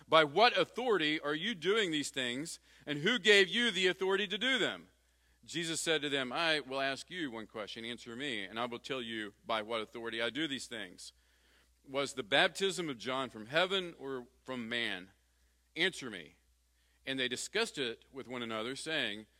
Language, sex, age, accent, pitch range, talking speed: English, male, 40-59, American, 90-125 Hz, 190 wpm